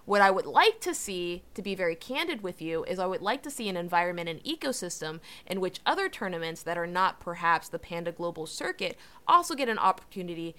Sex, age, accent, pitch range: female, 20-39, American, 175-210 Hz